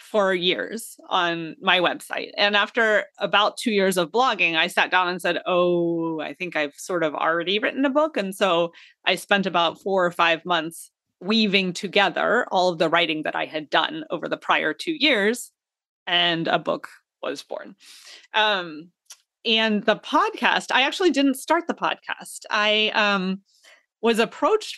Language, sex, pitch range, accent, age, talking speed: English, female, 180-255 Hz, American, 30-49, 170 wpm